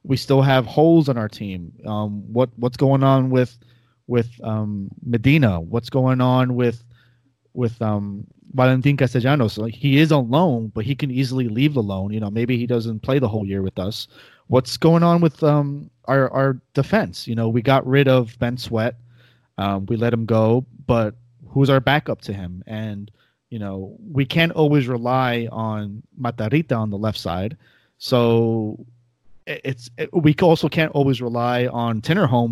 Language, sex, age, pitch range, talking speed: English, male, 30-49, 110-135 Hz, 175 wpm